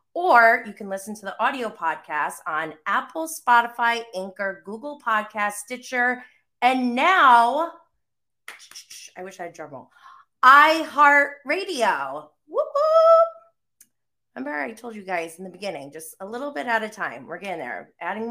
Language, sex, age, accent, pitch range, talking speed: English, female, 30-49, American, 170-245 Hz, 145 wpm